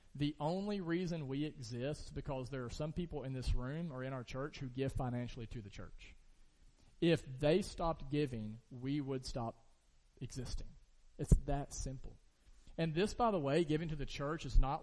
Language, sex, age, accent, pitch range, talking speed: English, male, 40-59, American, 125-150 Hz, 185 wpm